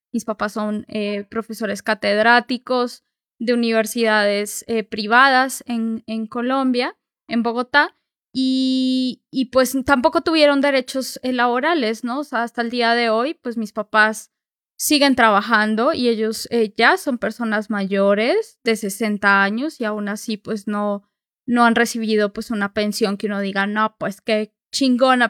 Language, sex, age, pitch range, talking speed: Spanish, female, 20-39, 220-260 Hz, 150 wpm